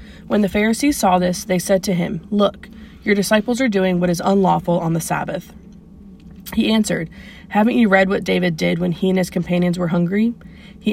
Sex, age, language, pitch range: female, 20-39, English, 180-205 Hz